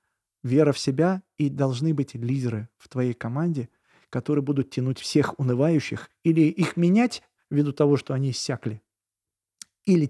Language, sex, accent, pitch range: Russian, male, native, 125-145 Hz